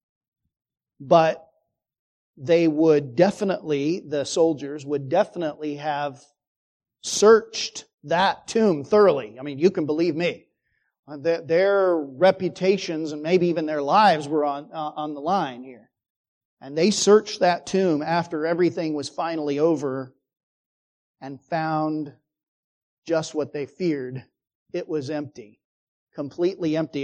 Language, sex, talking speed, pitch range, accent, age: English, male, 120 wpm, 145-180 Hz, American, 40-59